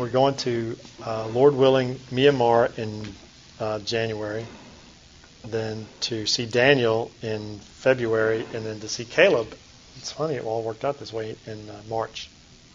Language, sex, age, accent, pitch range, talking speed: English, male, 40-59, American, 110-130 Hz, 150 wpm